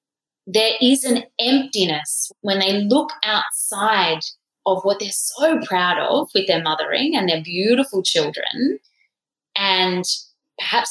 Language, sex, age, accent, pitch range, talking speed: English, female, 10-29, Australian, 190-280 Hz, 125 wpm